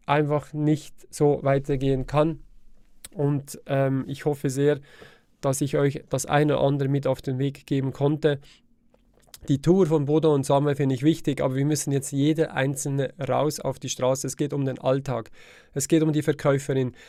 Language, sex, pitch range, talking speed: German, male, 135-150 Hz, 185 wpm